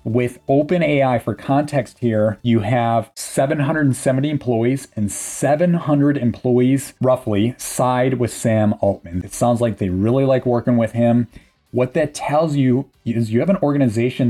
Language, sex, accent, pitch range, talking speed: English, male, American, 105-130 Hz, 145 wpm